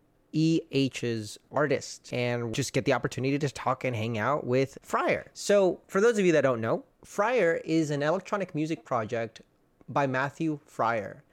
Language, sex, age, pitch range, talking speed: English, male, 30-49, 120-155 Hz, 165 wpm